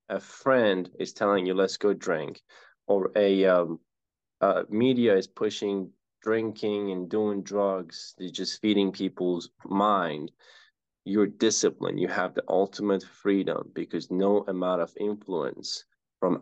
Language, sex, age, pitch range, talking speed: English, male, 20-39, 95-105 Hz, 130 wpm